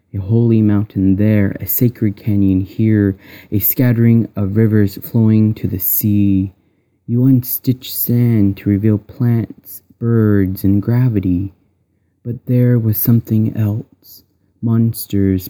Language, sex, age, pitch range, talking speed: English, male, 30-49, 100-115 Hz, 120 wpm